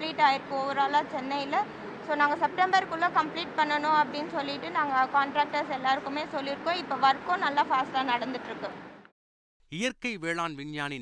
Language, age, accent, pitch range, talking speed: Tamil, 30-49, native, 115-170 Hz, 85 wpm